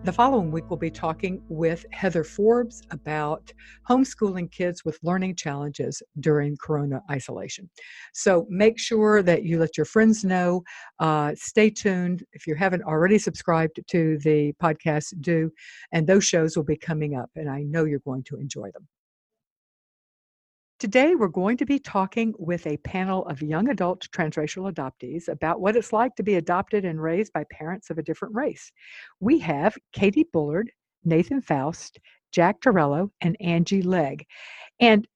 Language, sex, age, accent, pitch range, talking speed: English, female, 60-79, American, 160-205 Hz, 160 wpm